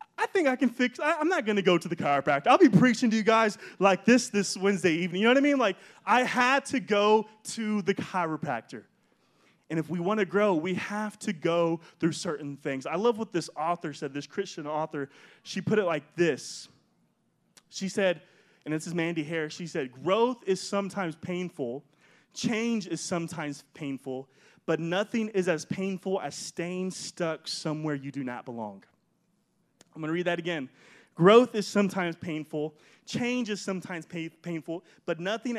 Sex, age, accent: male, 20-39, American